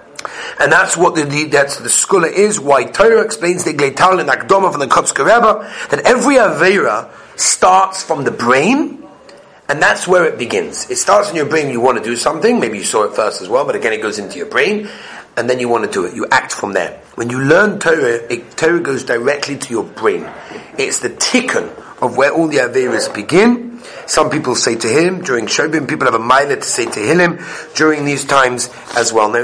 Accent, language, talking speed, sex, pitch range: British, English, 215 wpm, male, 135-200 Hz